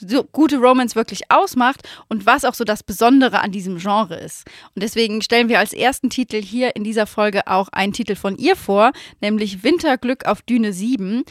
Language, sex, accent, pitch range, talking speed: German, female, German, 205-255 Hz, 195 wpm